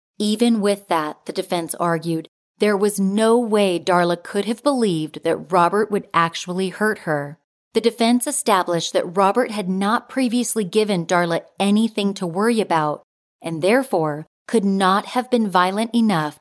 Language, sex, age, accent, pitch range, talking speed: English, female, 30-49, American, 170-230 Hz, 155 wpm